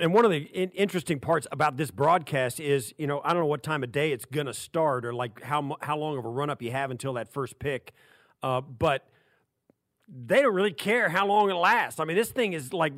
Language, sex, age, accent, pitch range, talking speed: English, male, 40-59, American, 145-190 Hz, 245 wpm